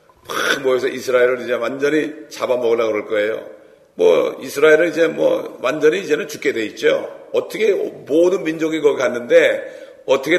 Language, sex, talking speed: English, male, 135 wpm